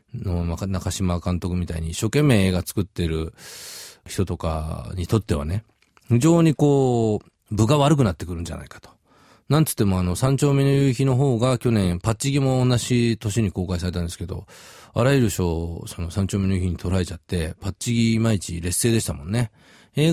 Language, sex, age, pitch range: Japanese, male, 40-59, 95-135 Hz